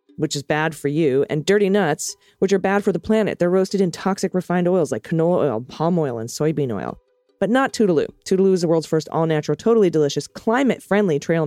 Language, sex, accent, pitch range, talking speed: English, female, American, 150-205 Hz, 215 wpm